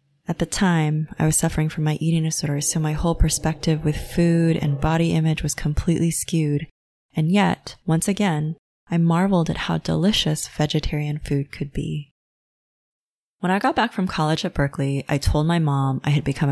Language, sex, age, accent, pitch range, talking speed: English, female, 20-39, American, 145-175 Hz, 180 wpm